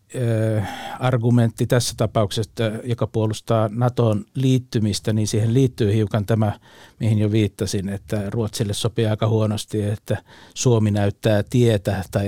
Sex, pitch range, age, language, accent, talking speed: male, 105-115 Hz, 60-79, Finnish, native, 120 wpm